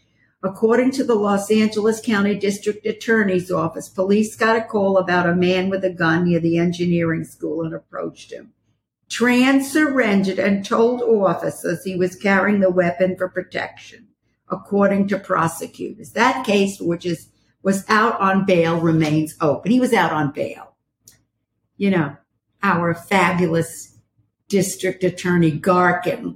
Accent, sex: American, female